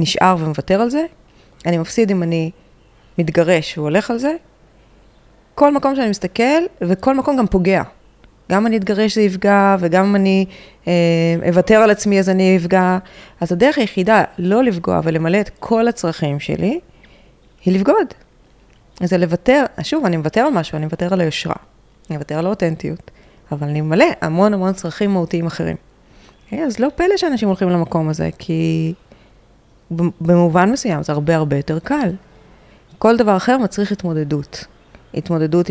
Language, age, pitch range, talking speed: Hebrew, 30-49, 160-210 Hz, 160 wpm